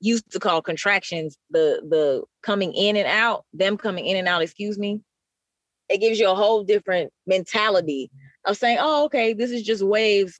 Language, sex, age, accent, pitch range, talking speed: English, female, 20-39, American, 170-215 Hz, 185 wpm